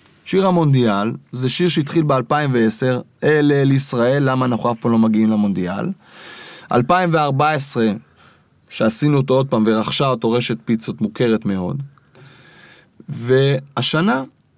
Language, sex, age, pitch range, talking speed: Hebrew, male, 20-39, 115-160 Hz, 115 wpm